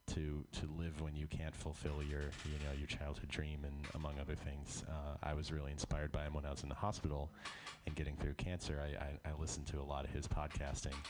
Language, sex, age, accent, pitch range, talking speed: English, male, 30-49, American, 70-85 Hz, 240 wpm